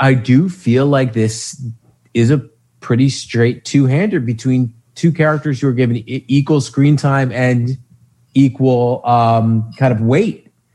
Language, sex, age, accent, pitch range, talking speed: English, male, 30-49, American, 115-145 Hz, 140 wpm